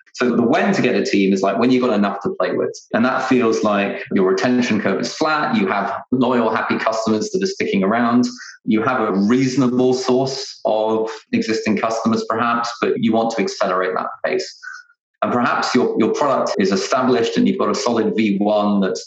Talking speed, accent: 200 wpm, British